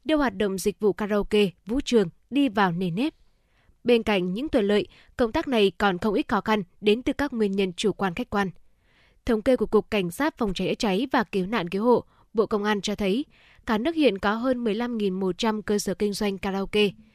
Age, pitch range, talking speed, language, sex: 10-29, 205-250 Hz, 225 wpm, Vietnamese, female